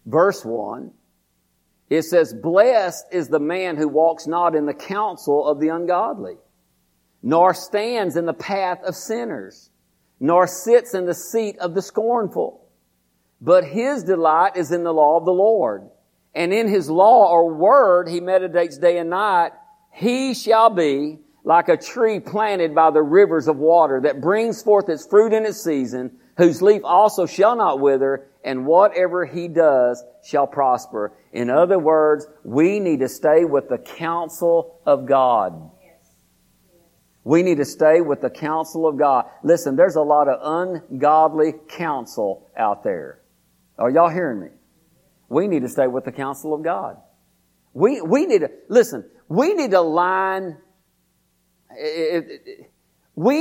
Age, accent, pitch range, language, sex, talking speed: 50-69, American, 145-200 Hz, English, male, 155 wpm